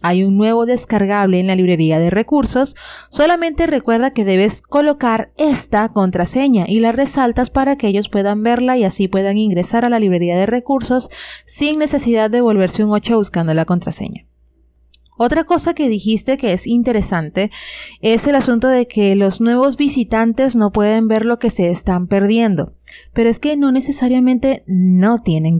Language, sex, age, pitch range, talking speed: English, female, 30-49, 190-250 Hz, 170 wpm